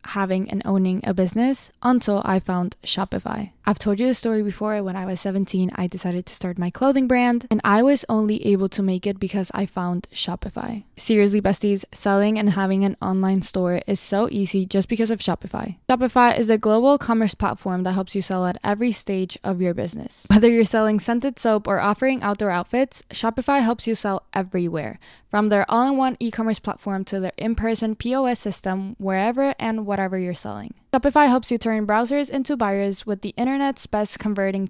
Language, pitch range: English, 185-225 Hz